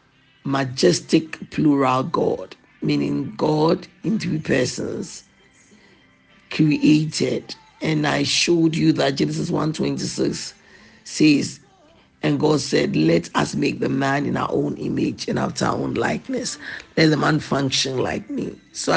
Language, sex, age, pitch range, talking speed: English, male, 50-69, 150-200 Hz, 130 wpm